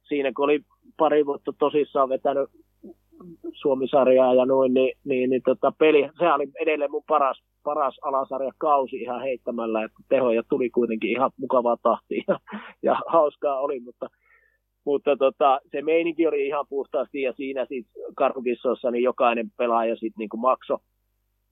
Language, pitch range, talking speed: Finnish, 100-130 Hz, 145 wpm